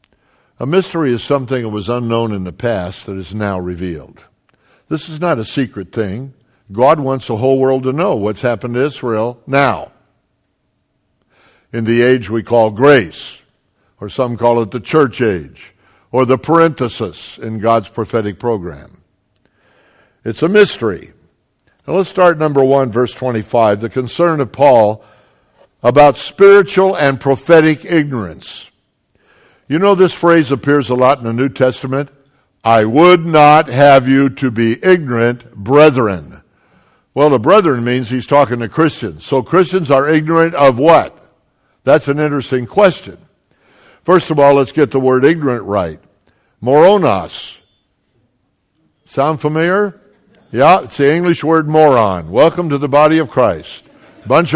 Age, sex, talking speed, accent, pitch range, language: 60-79, male, 145 wpm, American, 115-155 Hz, English